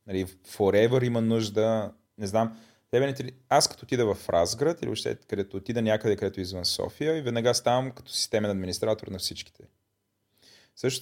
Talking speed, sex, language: 145 wpm, male, Bulgarian